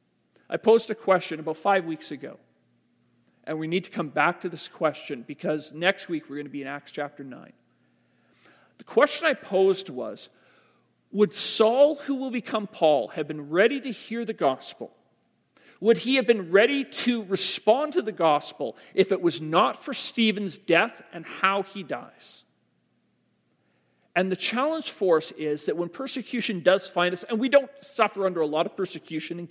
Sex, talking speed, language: male, 180 wpm, English